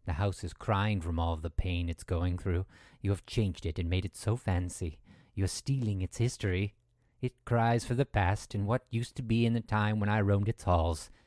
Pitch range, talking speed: 90-110 Hz, 225 wpm